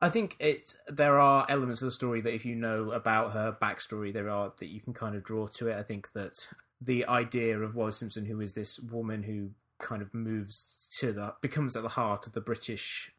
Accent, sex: British, male